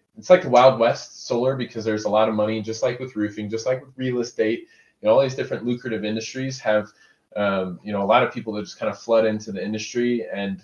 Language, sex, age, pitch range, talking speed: English, male, 20-39, 105-120 Hz, 260 wpm